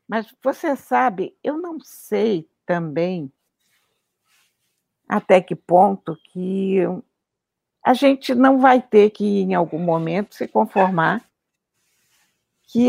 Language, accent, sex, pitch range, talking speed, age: Portuguese, Brazilian, female, 175-245 Hz, 105 wpm, 60-79